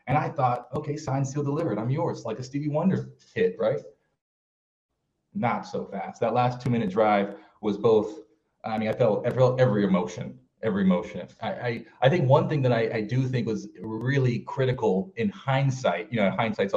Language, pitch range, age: English, 105-140 Hz, 30-49